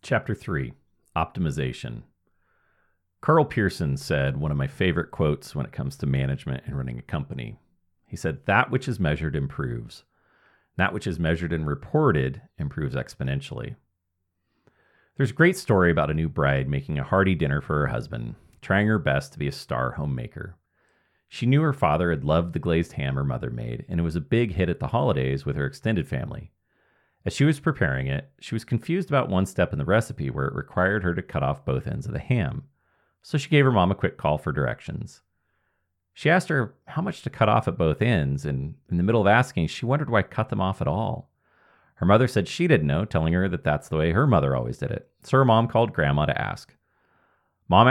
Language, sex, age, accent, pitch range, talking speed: English, male, 40-59, American, 75-120 Hz, 210 wpm